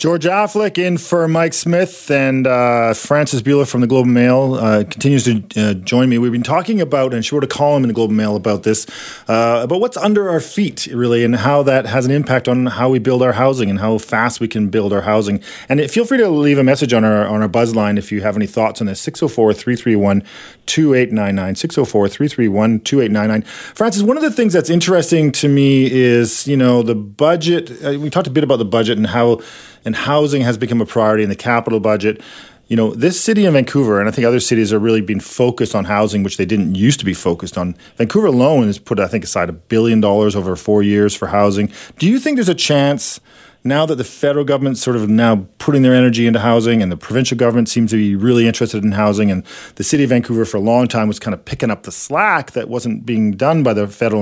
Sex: male